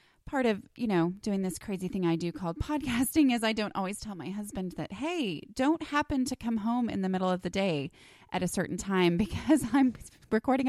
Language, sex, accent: English, female, American